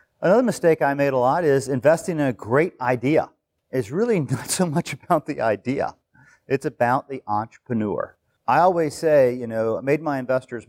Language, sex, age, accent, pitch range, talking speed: English, male, 40-59, American, 115-150 Hz, 185 wpm